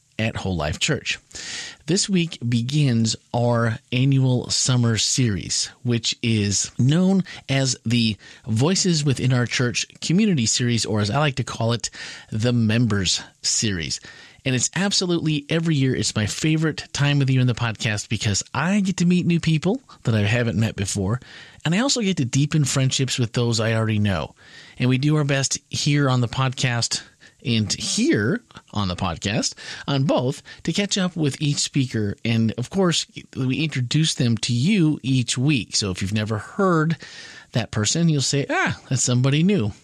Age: 30-49